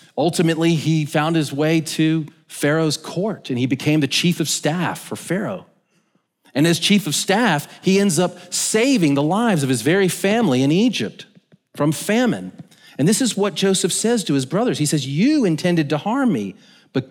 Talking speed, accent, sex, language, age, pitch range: 185 wpm, American, male, English, 40-59, 125-175 Hz